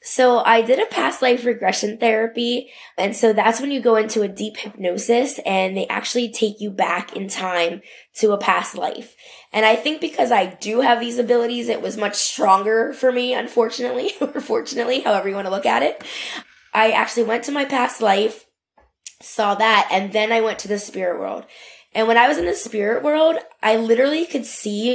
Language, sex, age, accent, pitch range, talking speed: English, female, 20-39, American, 200-240 Hz, 200 wpm